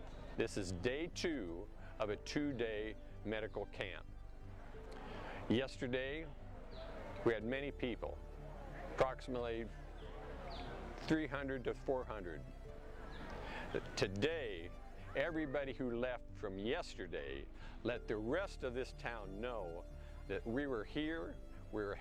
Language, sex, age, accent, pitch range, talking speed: English, male, 50-69, American, 95-130 Hz, 100 wpm